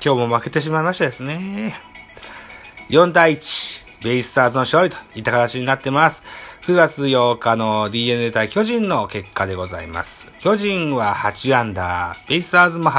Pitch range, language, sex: 110-175 Hz, Japanese, male